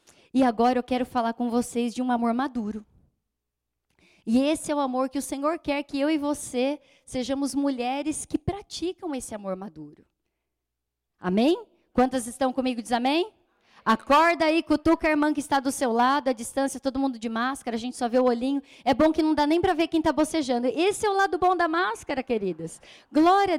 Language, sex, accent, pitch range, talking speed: Portuguese, female, Brazilian, 225-300 Hz, 200 wpm